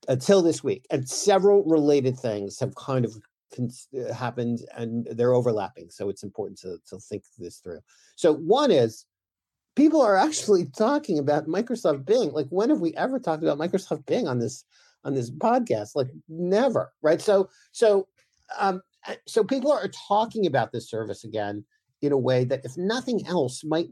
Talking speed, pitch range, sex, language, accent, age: 175 wpm, 130-205 Hz, male, English, American, 50-69